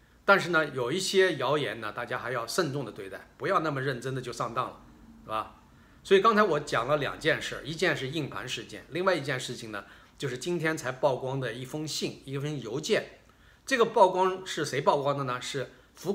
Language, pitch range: Chinese, 125-170 Hz